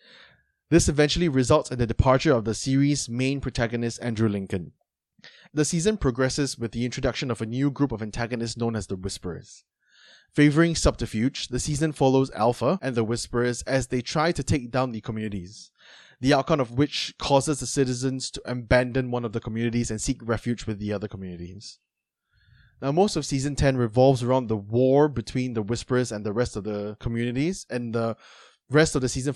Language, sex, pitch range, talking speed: English, male, 115-140 Hz, 185 wpm